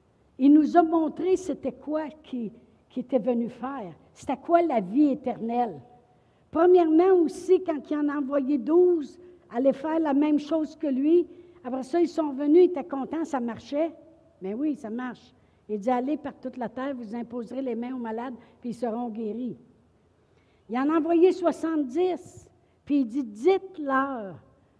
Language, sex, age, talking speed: French, female, 60-79, 170 wpm